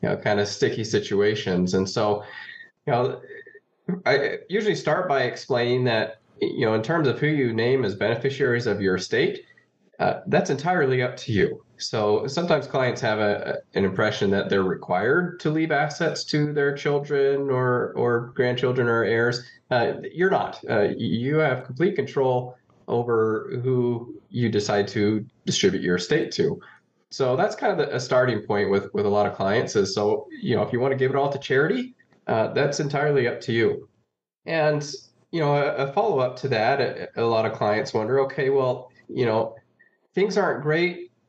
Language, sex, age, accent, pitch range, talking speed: English, male, 20-39, American, 110-150 Hz, 185 wpm